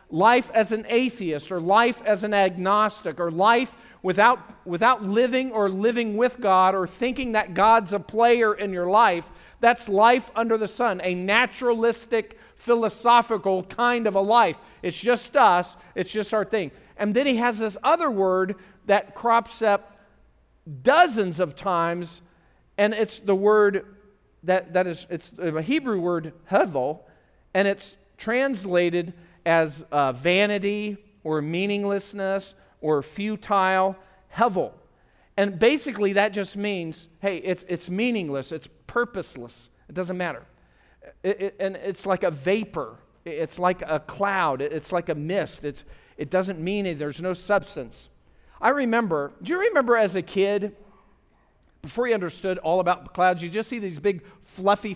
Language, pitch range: English, 175-220 Hz